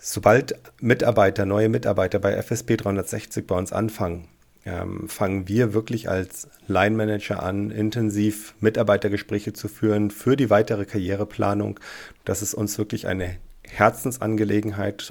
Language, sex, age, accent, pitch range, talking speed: English, male, 40-59, German, 95-110 Hz, 125 wpm